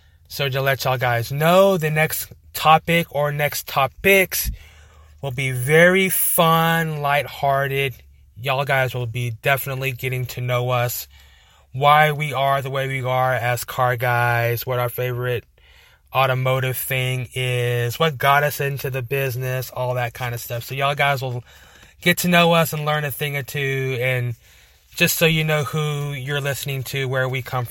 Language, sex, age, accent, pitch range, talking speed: English, male, 20-39, American, 125-155 Hz, 170 wpm